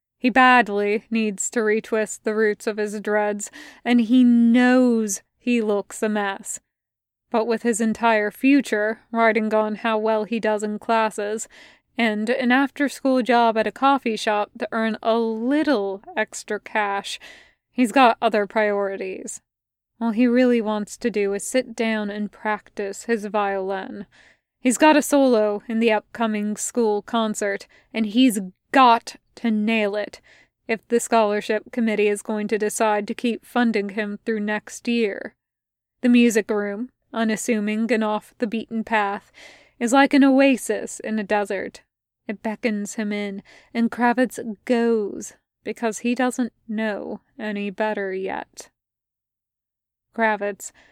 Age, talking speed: 20-39, 145 wpm